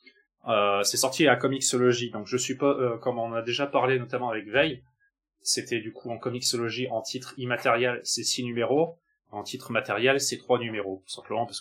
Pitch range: 120-155 Hz